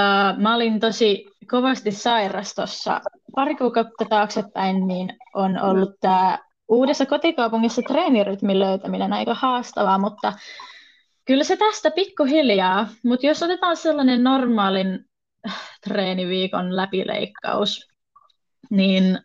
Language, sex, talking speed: Finnish, female, 95 wpm